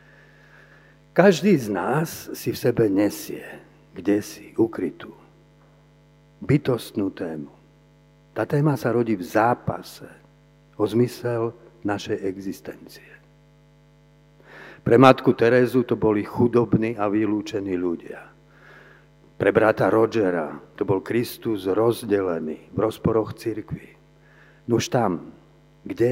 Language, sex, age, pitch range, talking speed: Slovak, male, 50-69, 110-145 Hz, 105 wpm